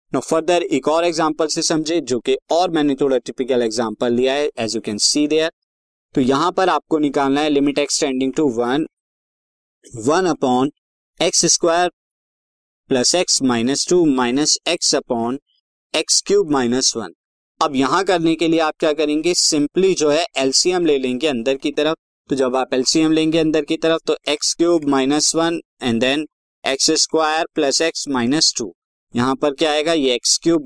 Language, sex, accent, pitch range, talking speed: Hindi, male, native, 130-165 Hz, 180 wpm